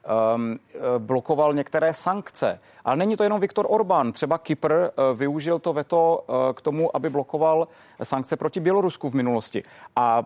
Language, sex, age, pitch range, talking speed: Czech, male, 30-49, 135-165 Hz, 140 wpm